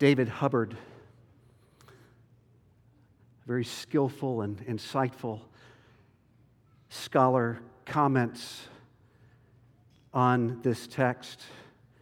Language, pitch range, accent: English, 120-150 Hz, American